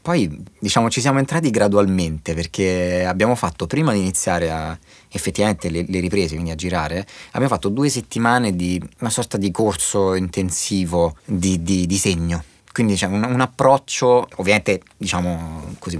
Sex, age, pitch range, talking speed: male, 30-49, 90-105 Hz, 155 wpm